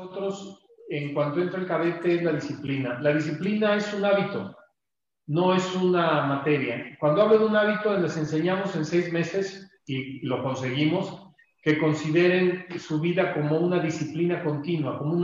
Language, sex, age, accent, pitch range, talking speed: Spanish, male, 40-59, Mexican, 150-180 Hz, 160 wpm